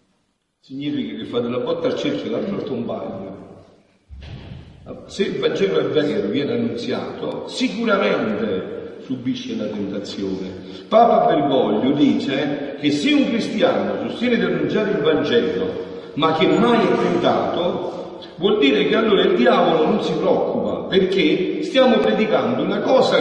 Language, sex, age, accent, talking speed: Italian, male, 50-69, native, 140 wpm